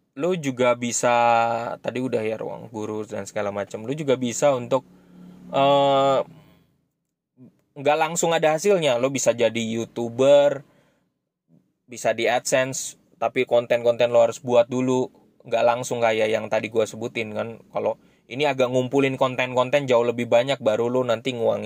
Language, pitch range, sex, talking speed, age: Indonesian, 115-140 Hz, male, 145 wpm, 20-39